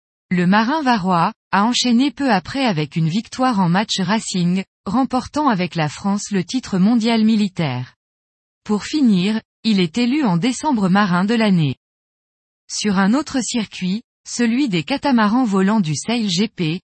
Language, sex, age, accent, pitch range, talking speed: French, female, 20-39, French, 180-245 Hz, 150 wpm